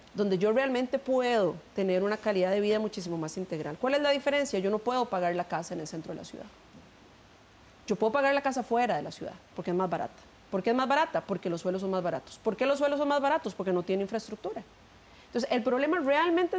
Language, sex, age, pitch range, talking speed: Spanish, female, 30-49, 185-265 Hz, 240 wpm